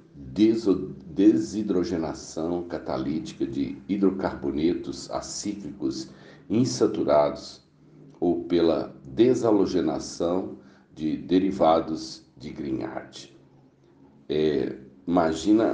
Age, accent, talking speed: 60-79, Brazilian, 60 wpm